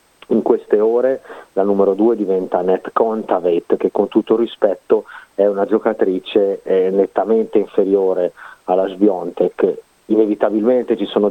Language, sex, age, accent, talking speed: Italian, male, 30-49, native, 120 wpm